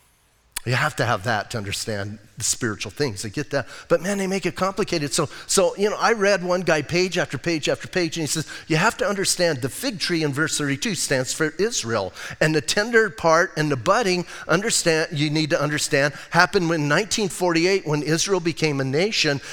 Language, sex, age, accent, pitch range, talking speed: English, male, 40-59, American, 145-195 Hz, 210 wpm